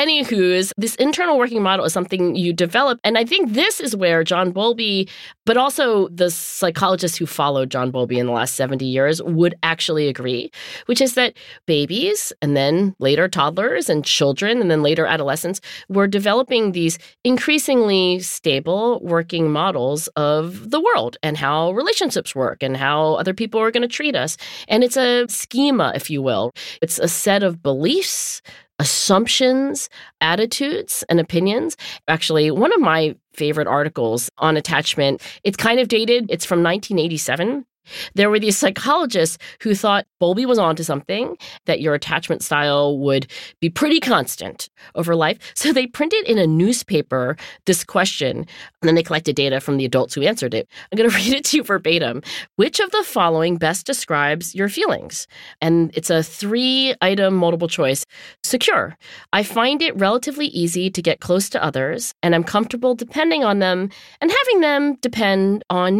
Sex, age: female, 40-59